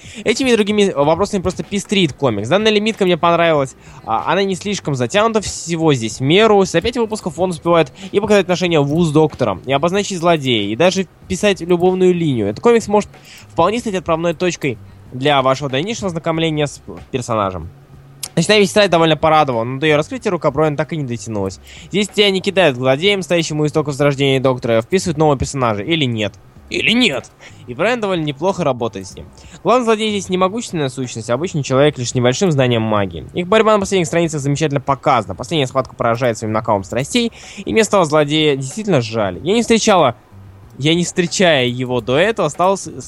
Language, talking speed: Russian, 180 wpm